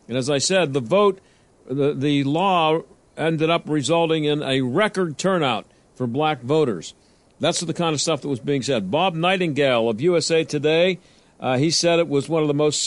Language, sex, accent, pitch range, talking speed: English, male, American, 150-185 Hz, 195 wpm